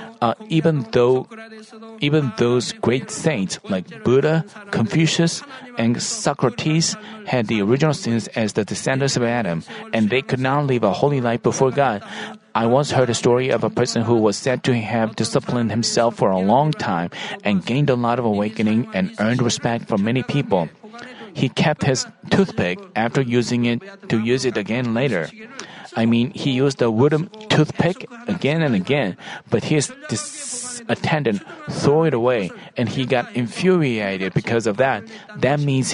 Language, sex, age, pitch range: Korean, male, 40-59, 120-175 Hz